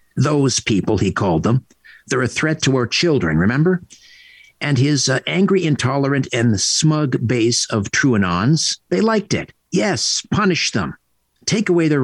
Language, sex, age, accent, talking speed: English, male, 50-69, American, 160 wpm